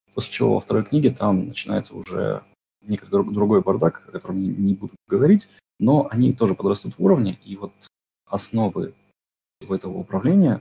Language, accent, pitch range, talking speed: Russian, native, 95-110 Hz, 155 wpm